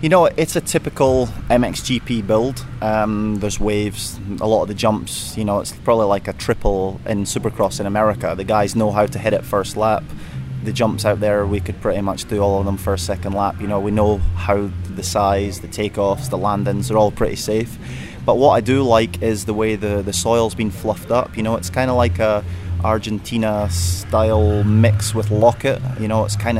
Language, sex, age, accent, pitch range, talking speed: English, male, 20-39, British, 100-115 Hz, 210 wpm